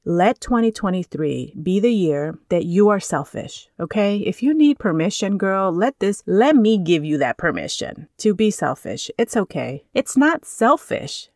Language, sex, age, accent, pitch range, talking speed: English, female, 30-49, American, 165-210 Hz, 165 wpm